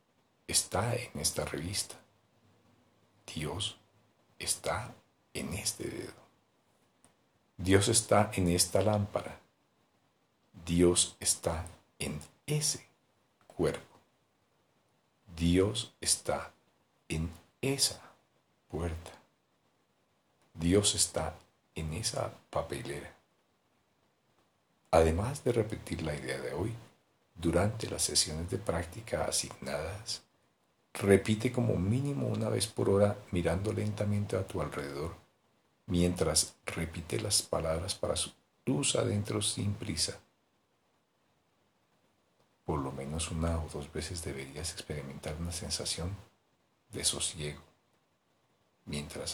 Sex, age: male, 50-69